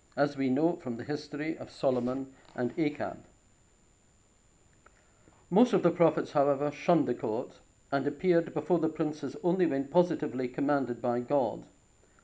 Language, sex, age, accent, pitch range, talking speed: English, male, 50-69, British, 130-165 Hz, 140 wpm